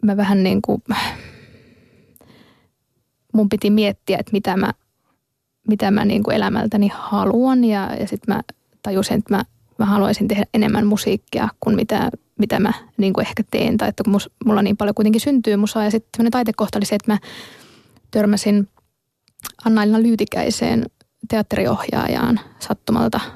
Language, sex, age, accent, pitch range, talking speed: Finnish, female, 20-39, native, 205-220 Hz, 135 wpm